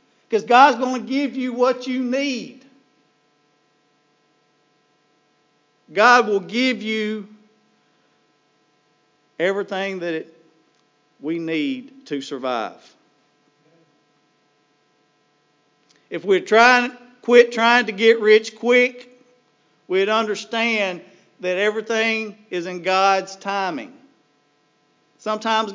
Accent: American